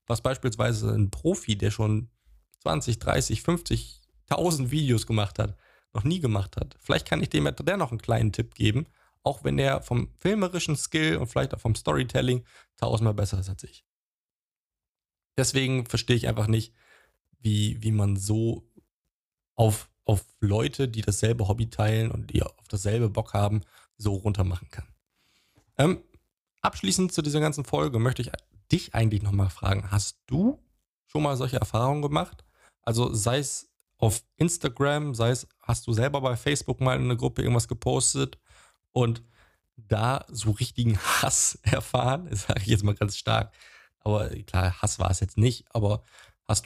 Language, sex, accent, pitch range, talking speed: German, male, German, 105-130 Hz, 165 wpm